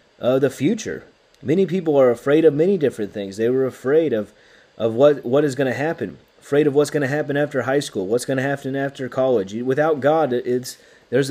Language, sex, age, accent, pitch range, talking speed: English, male, 30-49, American, 125-155 Hz, 220 wpm